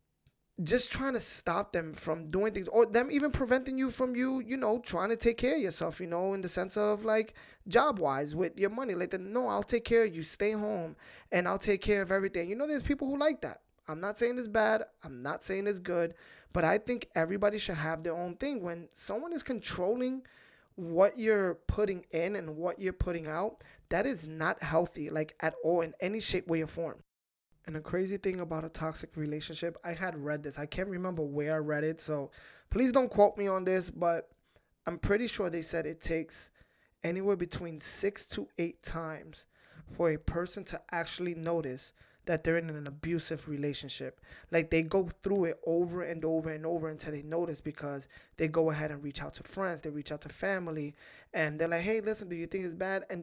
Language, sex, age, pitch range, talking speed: English, male, 20-39, 160-210 Hz, 215 wpm